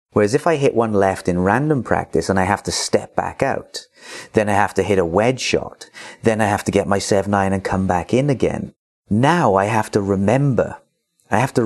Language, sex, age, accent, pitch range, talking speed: English, male, 30-49, British, 90-110 Hz, 225 wpm